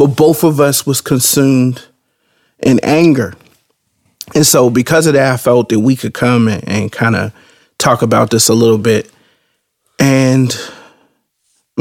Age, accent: 30-49, American